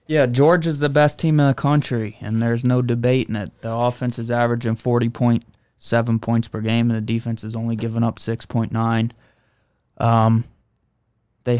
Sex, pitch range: male, 115-130 Hz